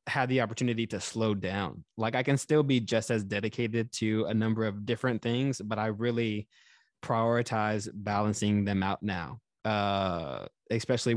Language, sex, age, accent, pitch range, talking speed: English, male, 20-39, American, 110-125 Hz, 160 wpm